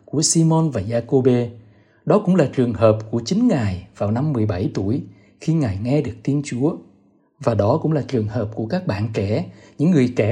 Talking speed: 205 wpm